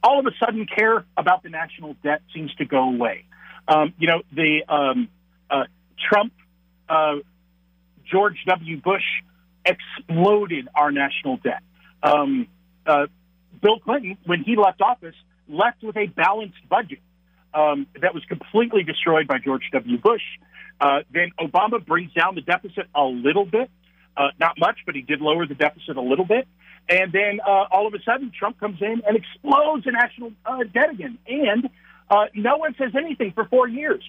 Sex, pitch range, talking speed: male, 150-215 Hz, 175 wpm